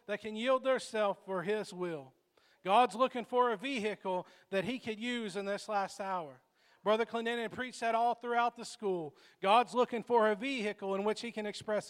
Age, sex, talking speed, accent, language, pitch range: 40-59, male, 195 wpm, American, English, 205-255 Hz